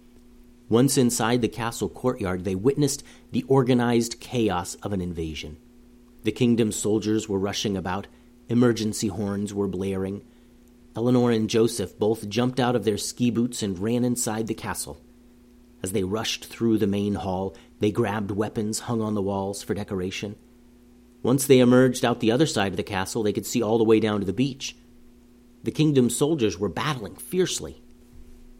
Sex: male